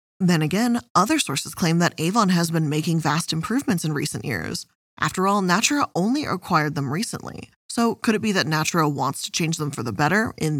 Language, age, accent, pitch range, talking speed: English, 20-39, American, 155-195 Hz, 205 wpm